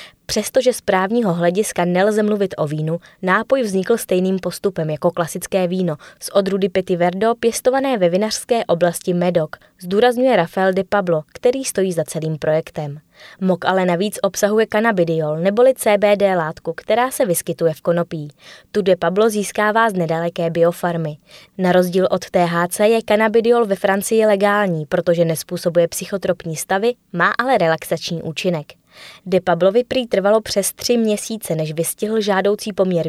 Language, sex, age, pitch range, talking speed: Czech, female, 20-39, 170-215 Hz, 145 wpm